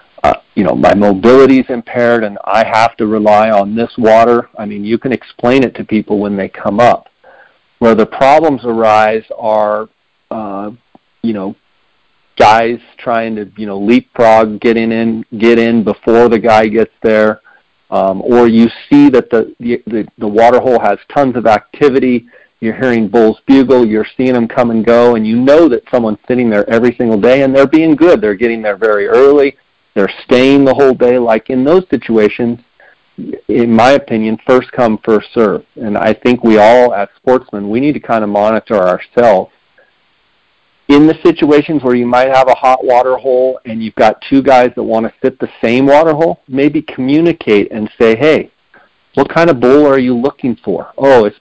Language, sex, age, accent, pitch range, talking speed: English, male, 40-59, American, 110-130 Hz, 190 wpm